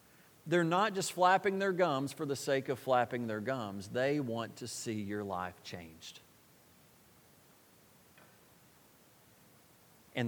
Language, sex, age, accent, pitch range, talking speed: English, male, 40-59, American, 115-155 Hz, 125 wpm